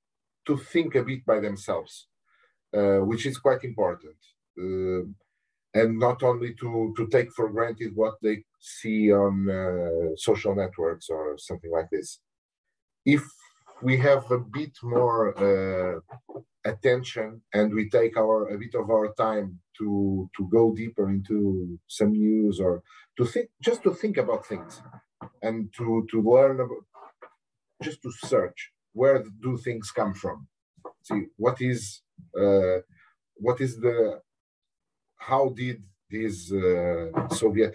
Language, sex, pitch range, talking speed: English, male, 100-125 Hz, 140 wpm